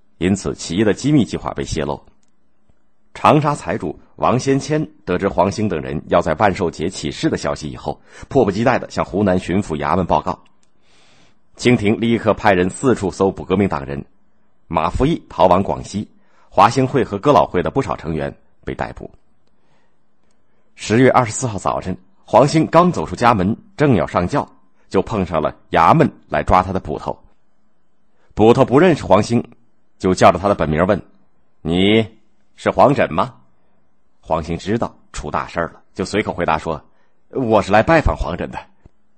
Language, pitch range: Chinese, 90-120 Hz